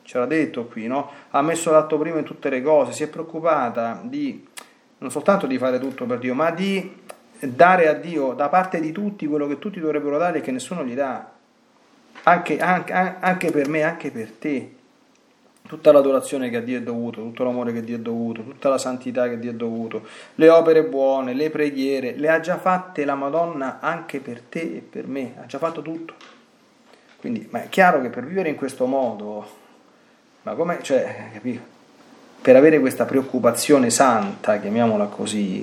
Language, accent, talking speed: Italian, native, 195 wpm